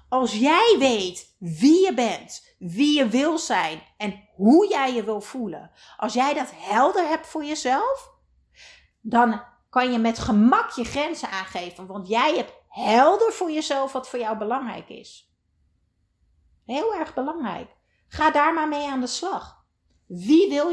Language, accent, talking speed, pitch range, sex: Dutch, Dutch, 155 wpm, 215-300 Hz, female